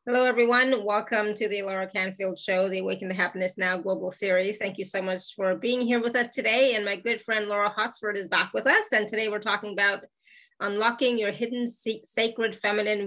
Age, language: 30-49, English